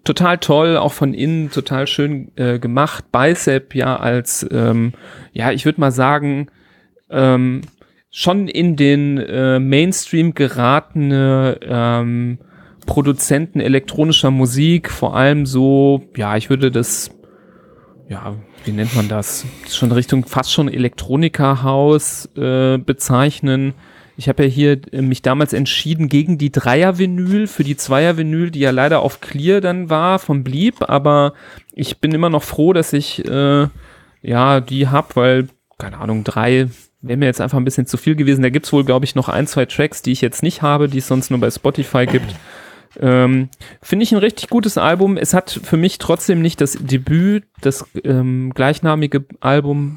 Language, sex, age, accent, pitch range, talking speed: German, male, 40-59, German, 130-155 Hz, 165 wpm